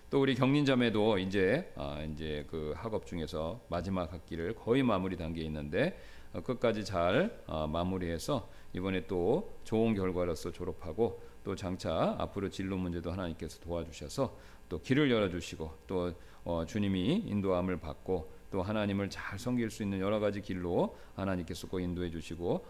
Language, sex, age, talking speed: English, male, 40-59, 135 wpm